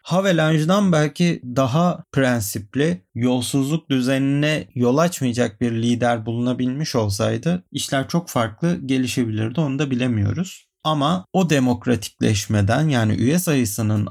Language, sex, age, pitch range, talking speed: Turkish, male, 40-59, 120-160 Hz, 105 wpm